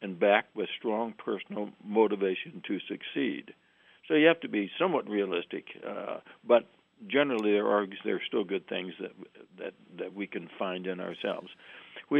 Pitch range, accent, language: 100-120 Hz, American, English